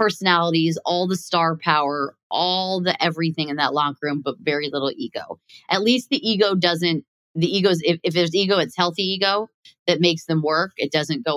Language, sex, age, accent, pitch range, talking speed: English, female, 20-39, American, 160-205 Hz, 195 wpm